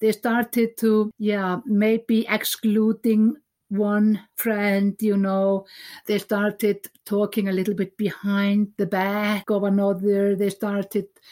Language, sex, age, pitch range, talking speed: English, female, 60-79, 205-235 Hz, 120 wpm